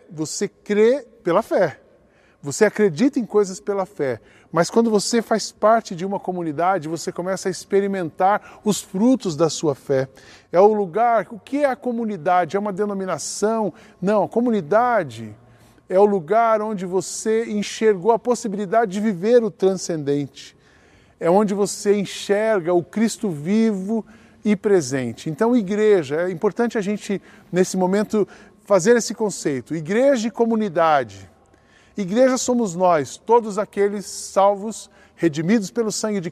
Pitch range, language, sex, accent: 185-225 Hz, Portuguese, male, Brazilian